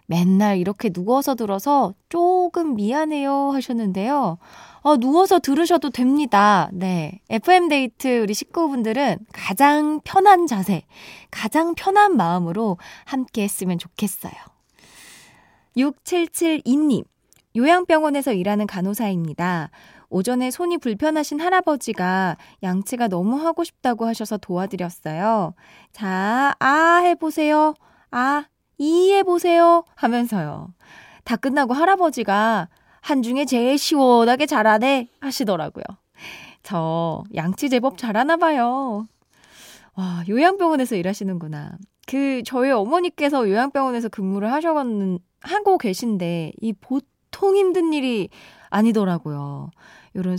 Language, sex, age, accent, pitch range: Korean, female, 20-39, native, 190-295 Hz